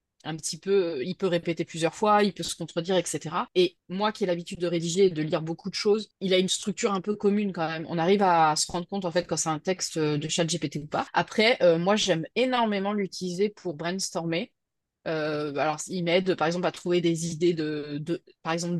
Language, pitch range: French, 165-195 Hz